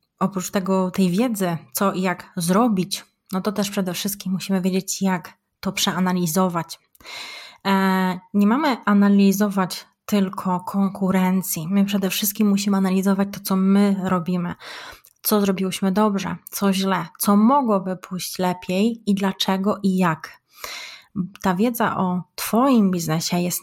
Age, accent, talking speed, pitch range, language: 20-39, native, 130 wpm, 185-205 Hz, Polish